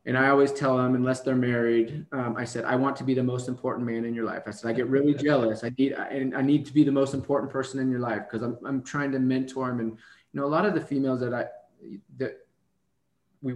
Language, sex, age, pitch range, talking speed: English, male, 20-39, 115-140 Hz, 270 wpm